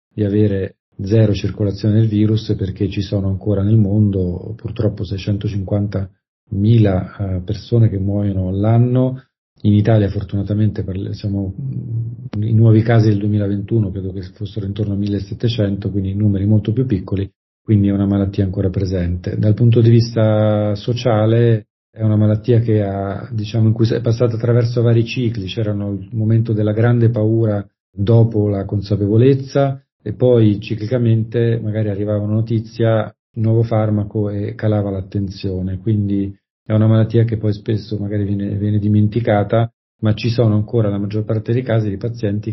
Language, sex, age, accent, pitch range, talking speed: Italian, male, 40-59, native, 100-110 Hz, 150 wpm